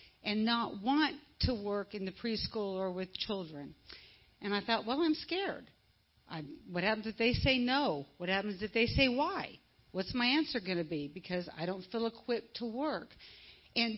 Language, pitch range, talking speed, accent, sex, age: English, 195-250 Hz, 185 wpm, American, female, 50-69